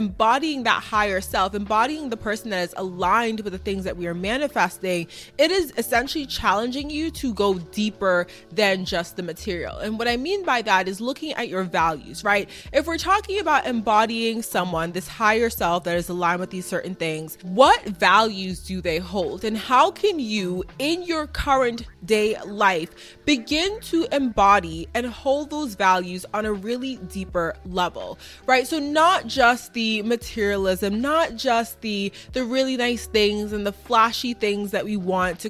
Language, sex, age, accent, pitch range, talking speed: English, female, 20-39, American, 185-260 Hz, 175 wpm